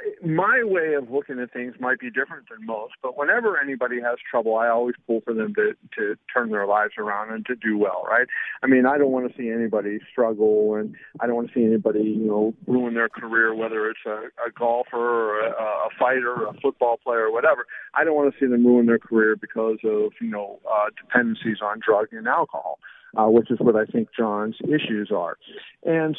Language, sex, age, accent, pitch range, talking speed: English, male, 50-69, American, 110-135 Hz, 220 wpm